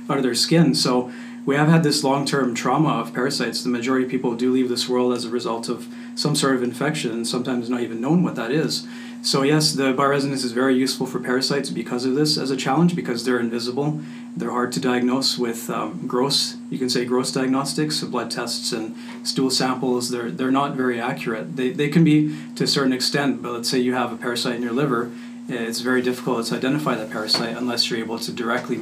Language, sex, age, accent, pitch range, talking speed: English, male, 40-59, American, 120-140 Hz, 225 wpm